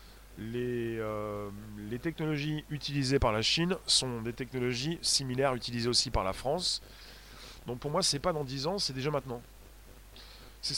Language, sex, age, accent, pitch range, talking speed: French, male, 20-39, French, 120-155 Hz, 160 wpm